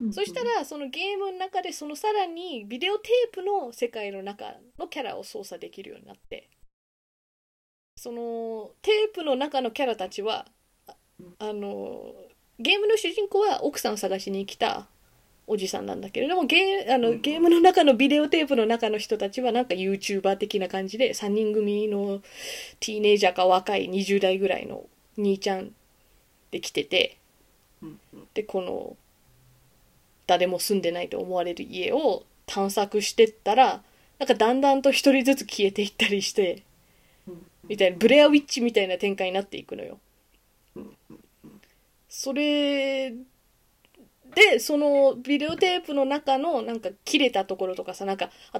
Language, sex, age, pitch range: Japanese, female, 20-39, 200-325 Hz